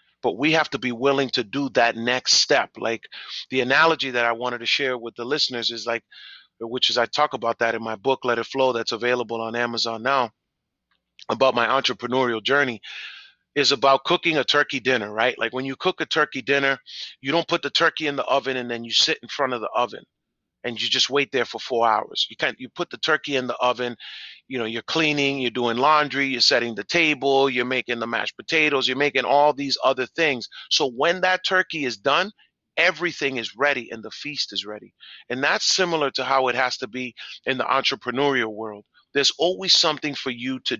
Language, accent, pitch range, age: English, American, 120-145 Hz, 30-49